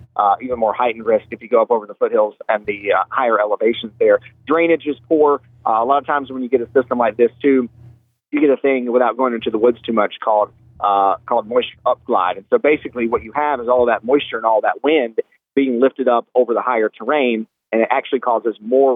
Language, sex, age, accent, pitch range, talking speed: English, male, 30-49, American, 120-150 Hz, 240 wpm